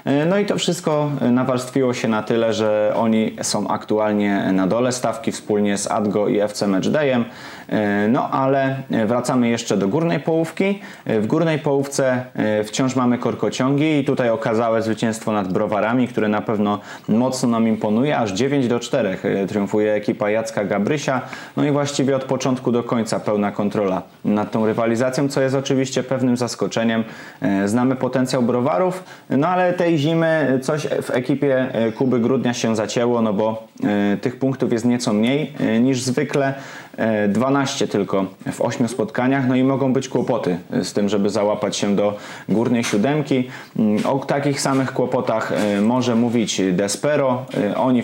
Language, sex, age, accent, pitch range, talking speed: Polish, male, 20-39, native, 110-135 Hz, 150 wpm